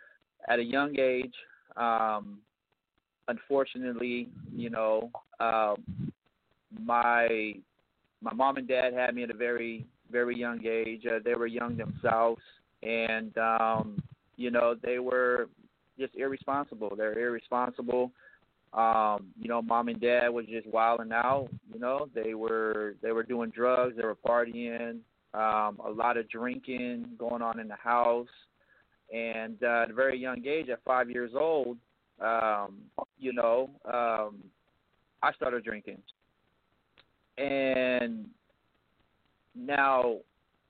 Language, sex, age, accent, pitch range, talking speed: English, male, 30-49, American, 115-125 Hz, 130 wpm